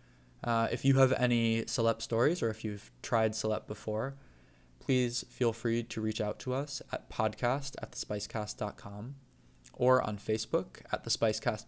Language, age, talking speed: English, 20-39, 160 wpm